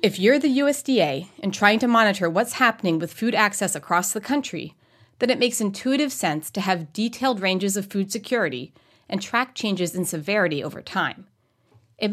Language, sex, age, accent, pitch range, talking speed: English, female, 30-49, American, 170-255 Hz, 180 wpm